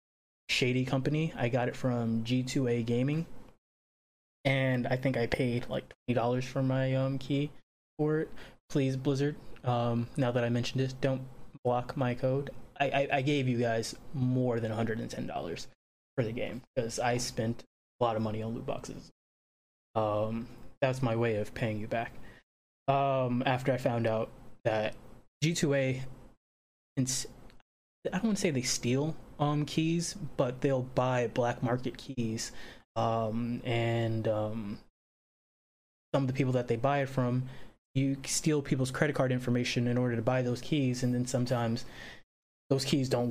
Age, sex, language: 20-39, male, English